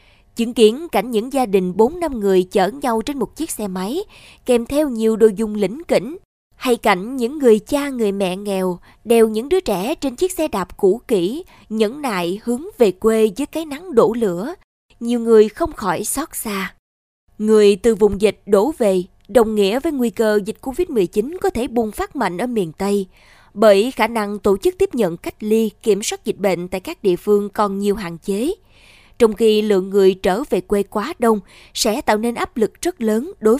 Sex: female